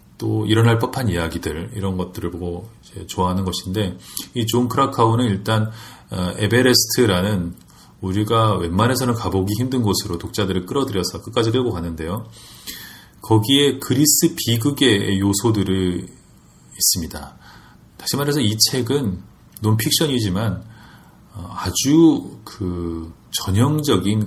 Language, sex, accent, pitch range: Korean, male, native, 95-120 Hz